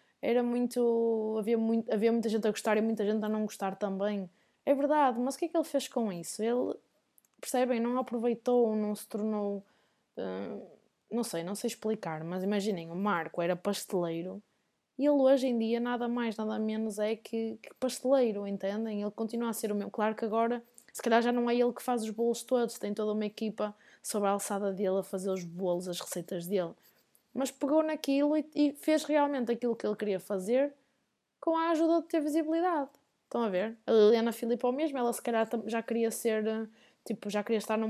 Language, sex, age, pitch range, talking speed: Portuguese, female, 20-39, 205-245 Hz, 205 wpm